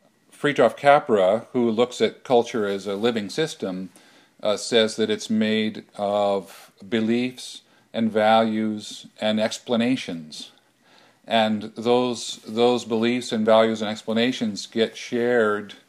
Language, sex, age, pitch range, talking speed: English, male, 50-69, 105-125 Hz, 115 wpm